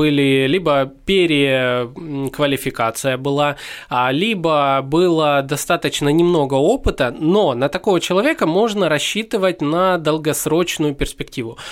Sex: male